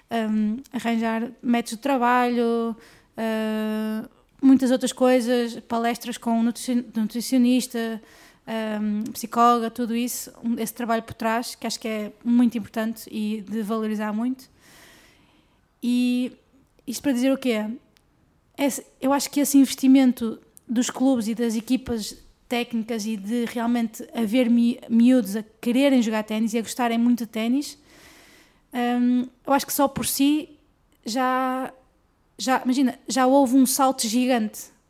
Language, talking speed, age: Portuguese, 140 wpm, 20-39